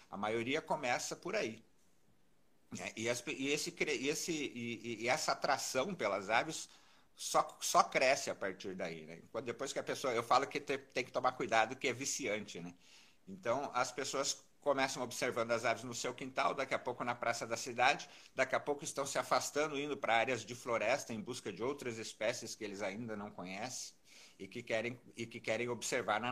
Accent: Brazilian